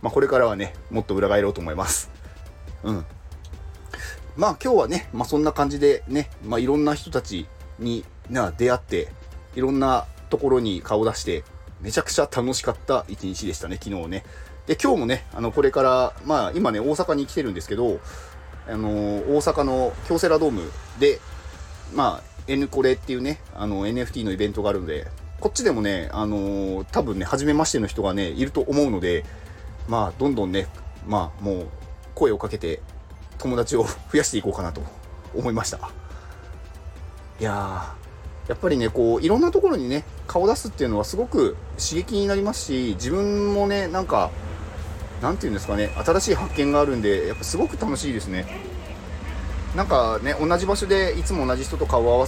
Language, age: Japanese, 30-49